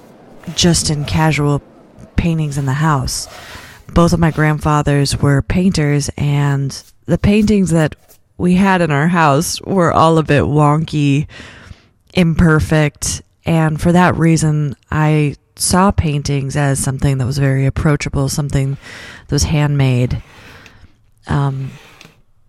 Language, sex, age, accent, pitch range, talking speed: French, female, 30-49, American, 130-160 Hz, 125 wpm